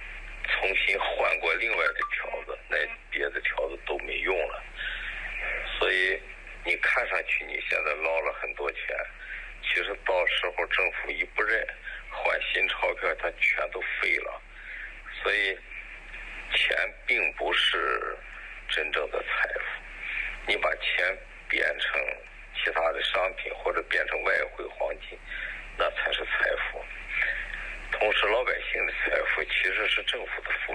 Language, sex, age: Chinese, male, 50-69